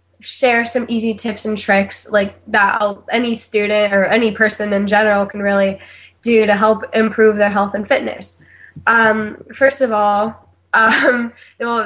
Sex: female